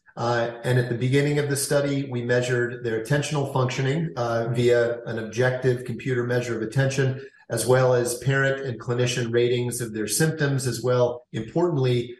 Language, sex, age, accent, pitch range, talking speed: English, male, 40-59, American, 120-135 Hz, 165 wpm